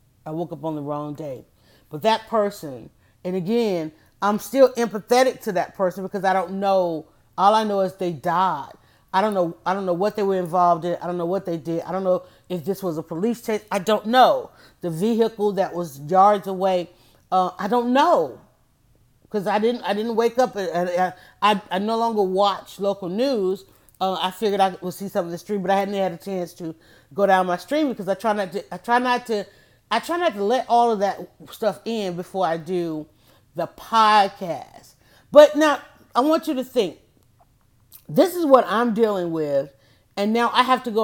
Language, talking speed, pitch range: English, 215 wpm, 175-225 Hz